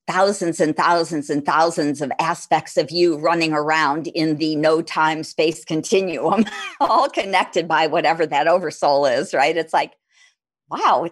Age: 50-69